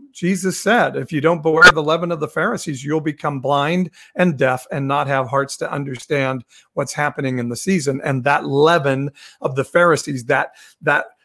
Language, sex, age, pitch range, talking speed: English, male, 50-69, 135-170 Hz, 185 wpm